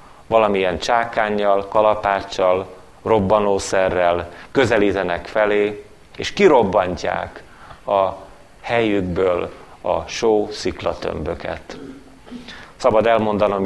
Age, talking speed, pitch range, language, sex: 30-49, 60 wpm, 95-110 Hz, Hungarian, male